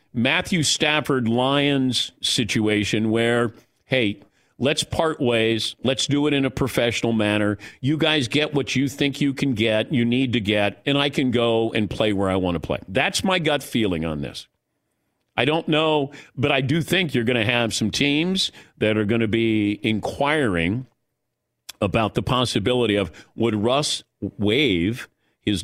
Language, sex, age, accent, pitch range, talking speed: English, male, 50-69, American, 110-140 Hz, 170 wpm